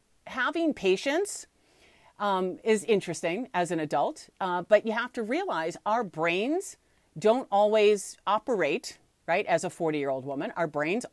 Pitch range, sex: 175-235 Hz, female